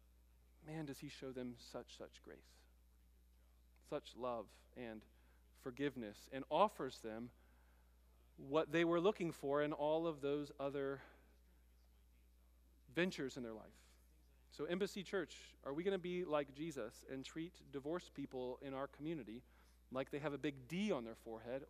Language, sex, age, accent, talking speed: English, male, 40-59, American, 150 wpm